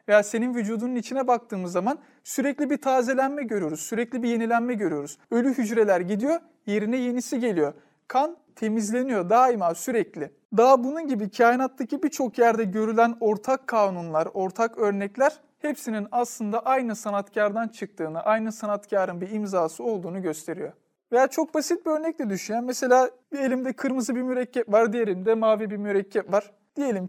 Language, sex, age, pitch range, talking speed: Turkish, male, 40-59, 205-275 Hz, 145 wpm